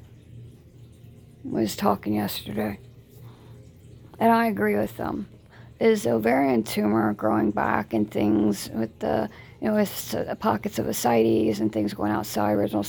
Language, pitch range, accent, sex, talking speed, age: English, 105-120 Hz, American, female, 135 wpm, 40-59